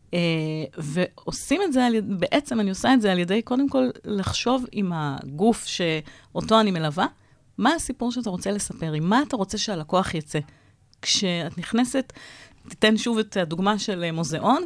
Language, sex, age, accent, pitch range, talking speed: Hebrew, female, 30-49, native, 170-225 Hz, 155 wpm